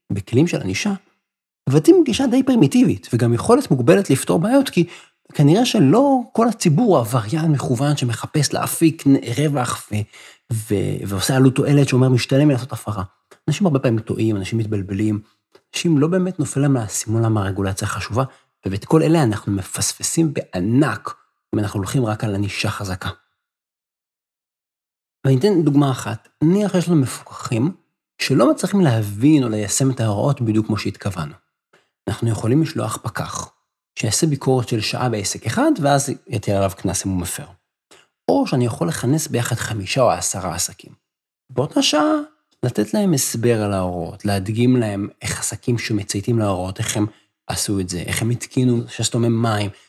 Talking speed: 150 wpm